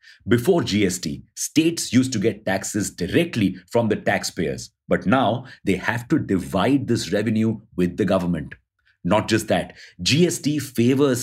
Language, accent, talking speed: English, Indian, 145 wpm